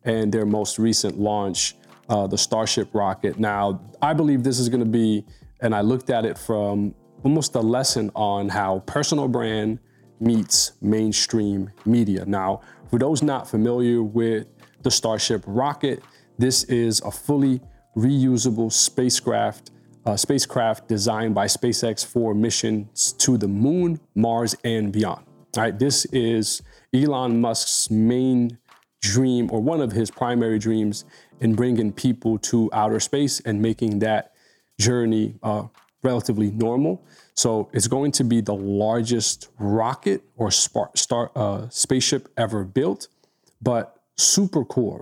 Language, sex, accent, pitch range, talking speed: English, male, American, 105-125 Hz, 140 wpm